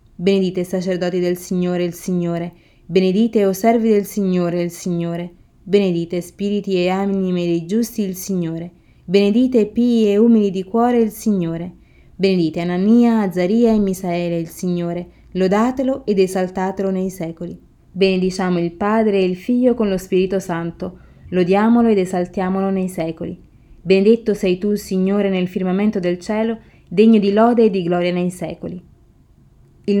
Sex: female